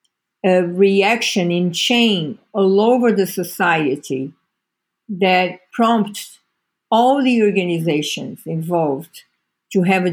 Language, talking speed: English, 100 wpm